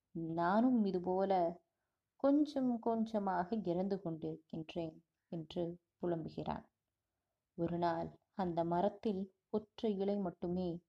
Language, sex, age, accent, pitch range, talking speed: Tamil, female, 20-39, native, 170-215 Hz, 85 wpm